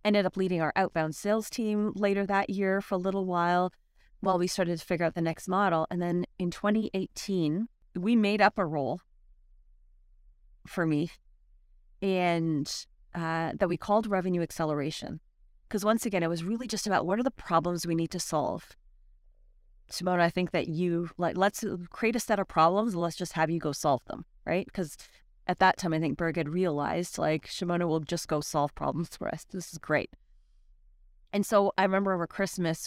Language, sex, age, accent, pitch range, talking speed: English, female, 30-49, American, 160-190 Hz, 190 wpm